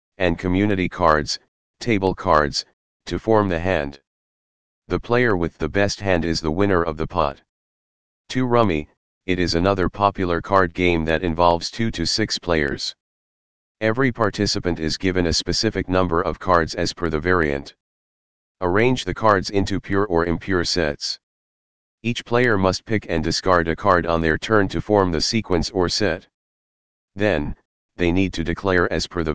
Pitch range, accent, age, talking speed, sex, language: 85-100 Hz, American, 40-59, 165 wpm, male, English